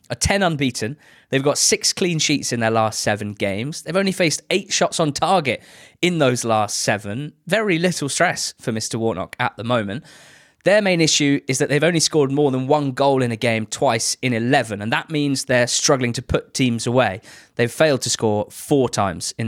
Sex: male